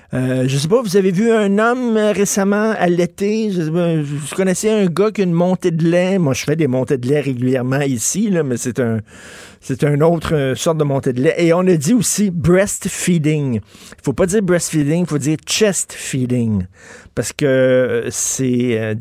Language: French